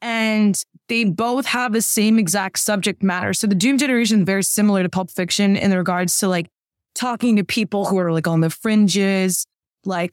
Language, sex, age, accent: English, female, 20-39, American